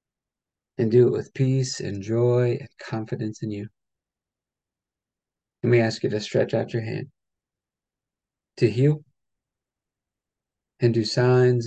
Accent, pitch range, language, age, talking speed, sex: American, 110-140 Hz, English, 40-59, 130 wpm, male